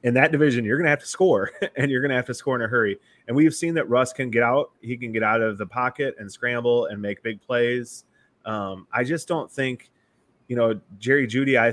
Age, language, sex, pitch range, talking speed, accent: 20-39, English, male, 110-130 Hz, 255 wpm, American